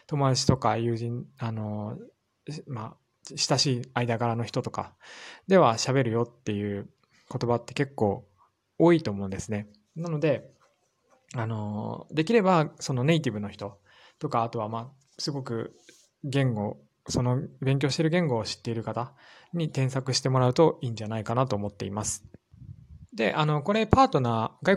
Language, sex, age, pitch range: Japanese, male, 20-39, 110-160 Hz